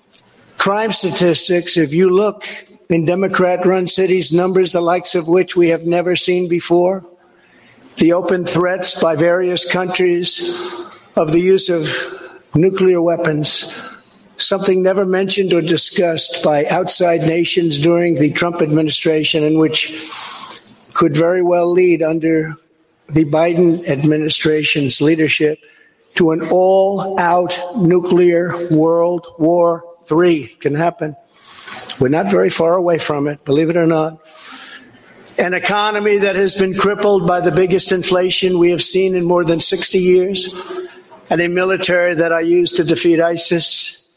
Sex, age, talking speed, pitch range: male, 60-79, 135 wpm, 160-185 Hz